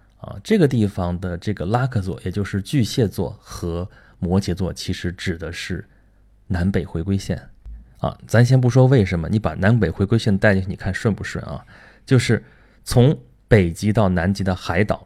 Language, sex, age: Chinese, male, 20-39